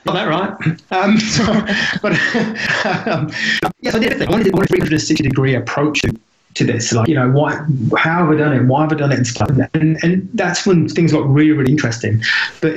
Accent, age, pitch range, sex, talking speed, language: British, 20-39, 120-155 Hz, male, 220 wpm, English